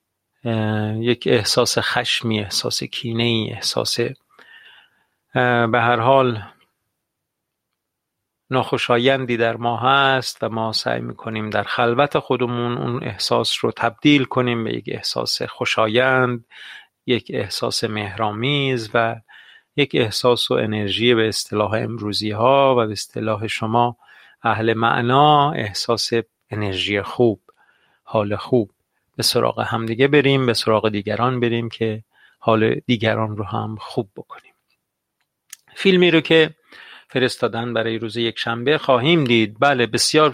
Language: Persian